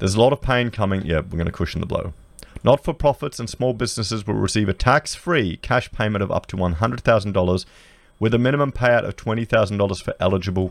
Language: English